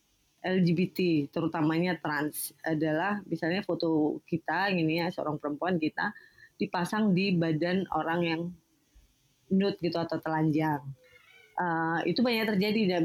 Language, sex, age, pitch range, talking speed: Indonesian, female, 20-39, 155-185 Hz, 115 wpm